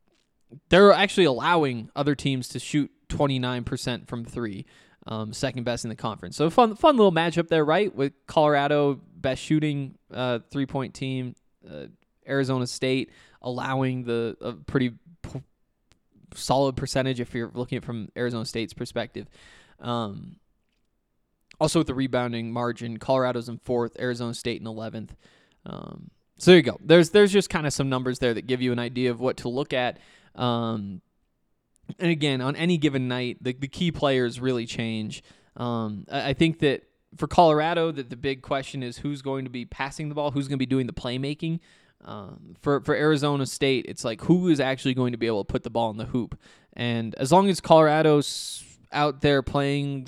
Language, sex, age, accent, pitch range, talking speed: English, male, 20-39, American, 120-145 Hz, 180 wpm